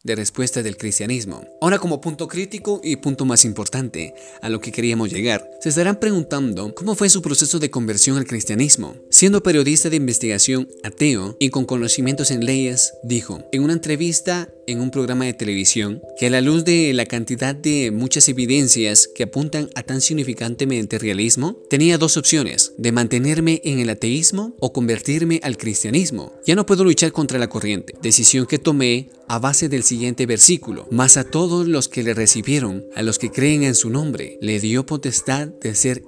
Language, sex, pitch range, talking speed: Spanish, male, 115-155 Hz, 180 wpm